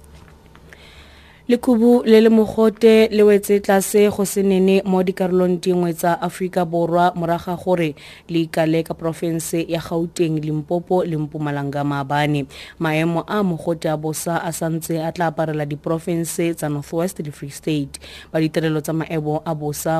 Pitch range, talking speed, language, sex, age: 160-200 Hz, 145 wpm, English, female, 30-49